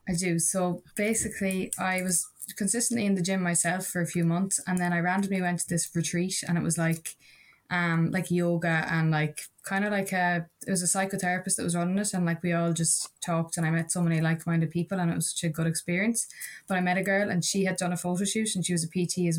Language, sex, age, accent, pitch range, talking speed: English, female, 20-39, Irish, 165-185 Hz, 255 wpm